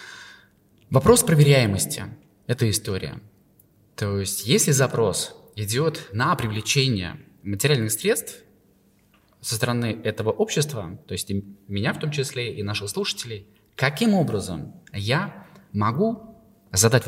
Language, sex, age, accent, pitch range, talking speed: Russian, male, 20-39, native, 100-145 Hz, 110 wpm